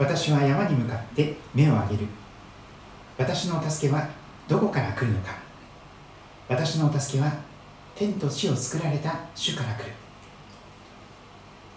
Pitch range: 120-165 Hz